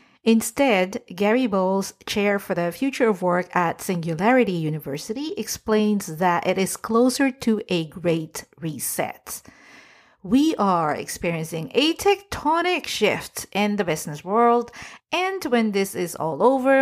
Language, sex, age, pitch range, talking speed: English, female, 50-69, 175-245 Hz, 130 wpm